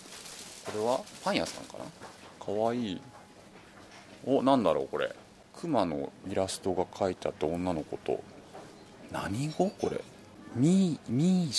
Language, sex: Japanese, male